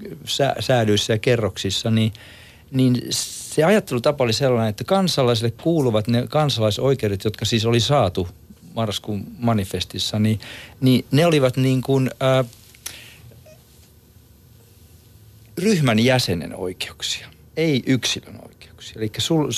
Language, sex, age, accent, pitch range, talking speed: Finnish, male, 50-69, native, 105-135 Hz, 105 wpm